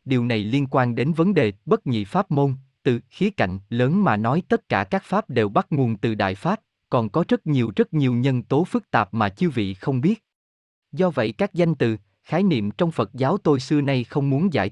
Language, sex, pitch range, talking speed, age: Vietnamese, male, 115-170 Hz, 235 wpm, 20-39